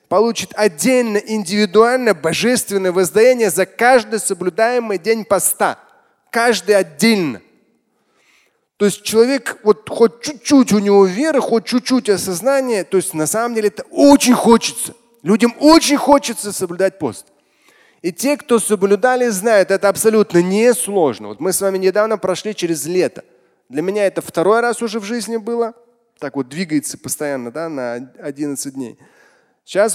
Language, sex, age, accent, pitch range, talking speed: Russian, male, 20-39, native, 165-225 Hz, 140 wpm